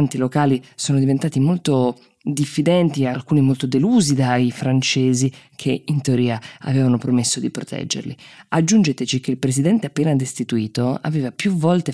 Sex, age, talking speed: female, 20-39, 135 wpm